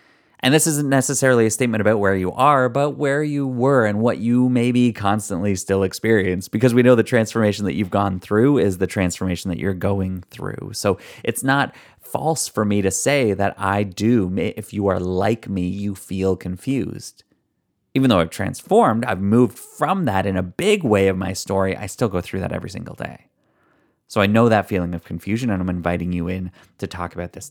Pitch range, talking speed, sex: 95-125 Hz, 205 wpm, male